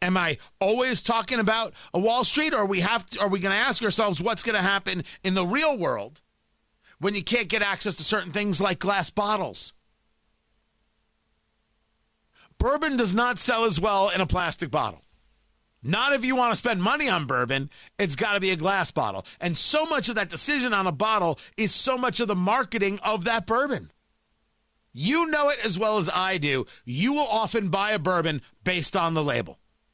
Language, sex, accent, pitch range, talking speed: English, male, American, 180-235 Hz, 195 wpm